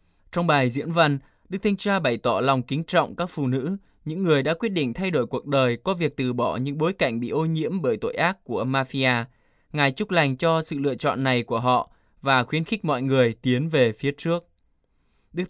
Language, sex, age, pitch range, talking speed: Vietnamese, male, 20-39, 125-160 Hz, 230 wpm